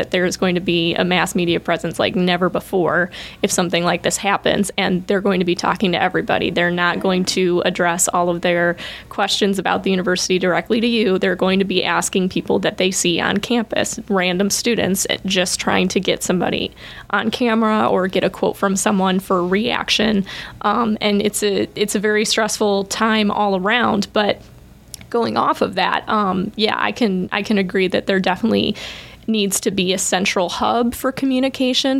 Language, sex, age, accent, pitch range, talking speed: English, female, 20-39, American, 180-210 Hz, 195 wpm